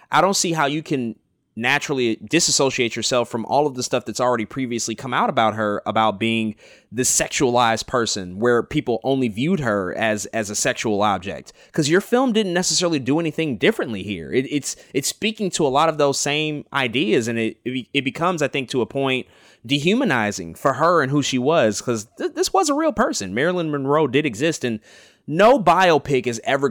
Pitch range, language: 110-145 Hz, English